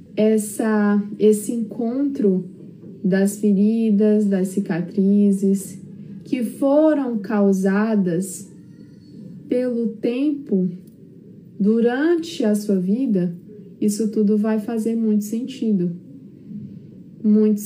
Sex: female